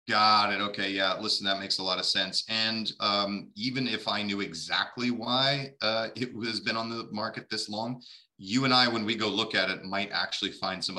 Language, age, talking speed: English, 30-49, 225 wpm